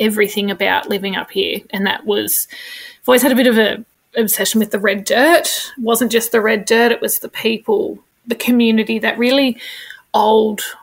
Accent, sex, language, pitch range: Australian, female, English, 215-255 Hz